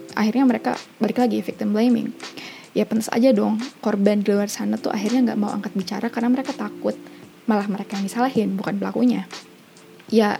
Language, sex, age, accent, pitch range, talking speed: Indonesian, female, 20-39, native, 205-240 Hz, 175 wpm